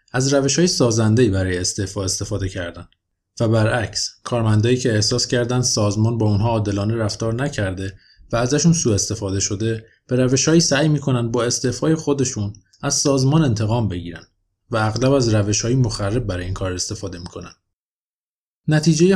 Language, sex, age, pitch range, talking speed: Persian, male, 20-39, 100-125 Hz, 145 wpm